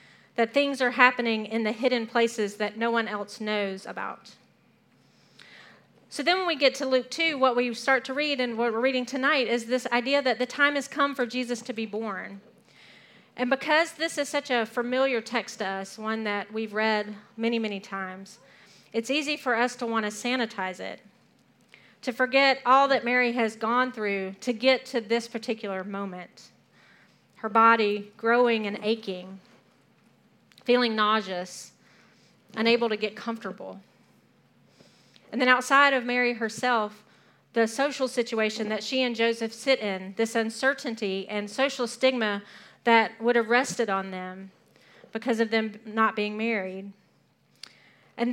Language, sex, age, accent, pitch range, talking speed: English, female, 40-59, American, 215-255 Hz, 160 wpm